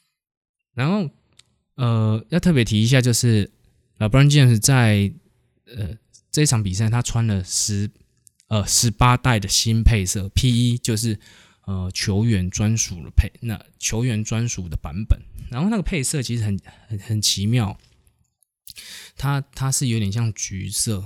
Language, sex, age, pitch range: Chinese, male, 20-39, 100-125 Hz